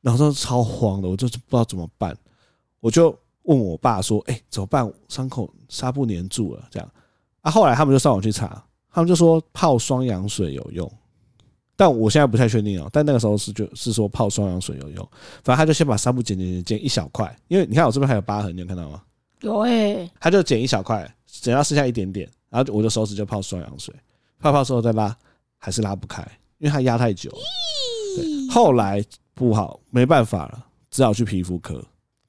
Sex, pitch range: male, 100-135 Hz